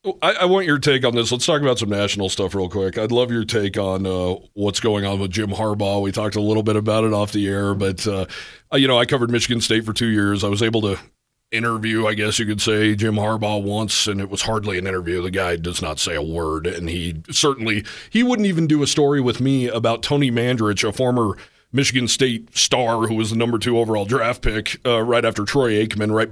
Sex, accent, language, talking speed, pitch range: male, American, English, 245 wpm, 105-130 Hz